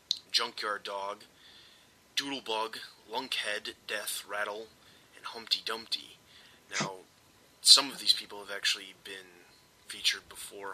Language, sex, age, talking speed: English, male, 20-39, 105 wpm